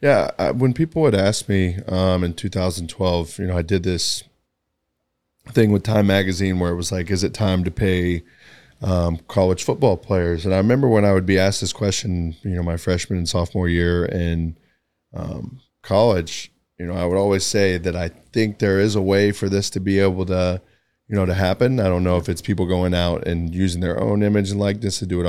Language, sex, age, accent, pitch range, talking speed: English, male, 20-39, American, 90-100 Hz, 220 wpm